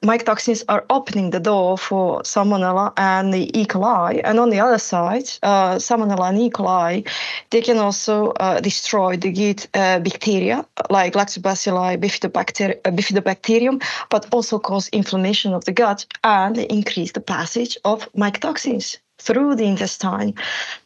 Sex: female